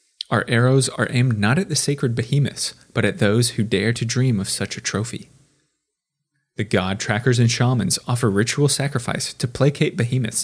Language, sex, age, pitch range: English, male, 20-39, 105-140 Hz